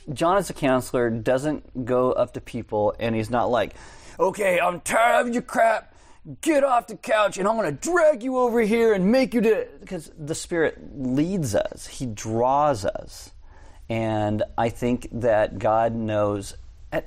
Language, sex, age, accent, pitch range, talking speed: English, male, 30-49, American, 100-140 Hz, 175 wpm